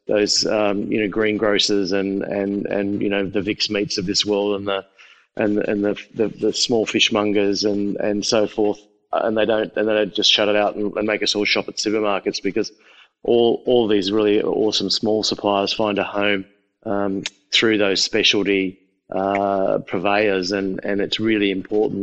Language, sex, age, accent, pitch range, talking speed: English, male, 20-39, Australian, 100-105 Hz, 190 wpm